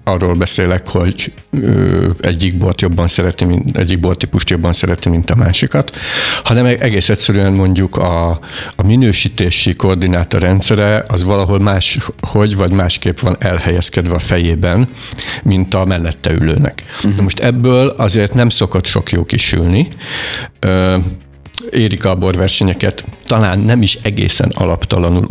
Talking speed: 130 wpm